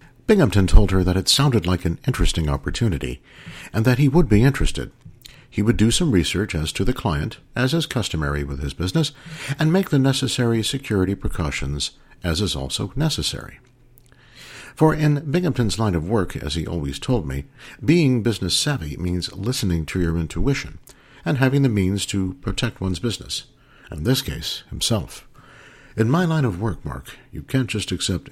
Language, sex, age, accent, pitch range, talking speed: English, male, 60-79, American, 90-135 Hz, 175 wpm